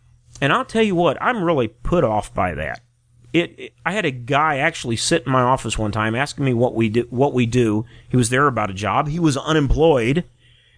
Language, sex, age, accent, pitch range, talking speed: English, male, 30-49, American, 115-145 Hz, 230 wpm